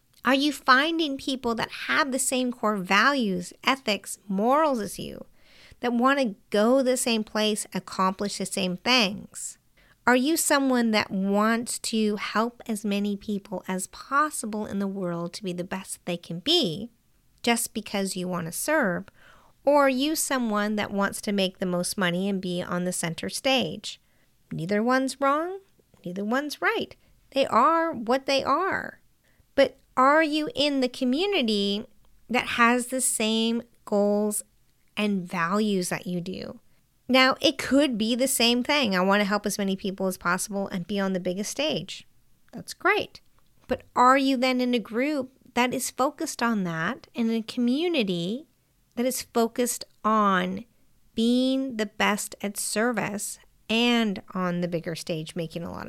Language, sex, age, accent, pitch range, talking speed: English, female, 50-69, American, 195-260 Hz, 160 wpm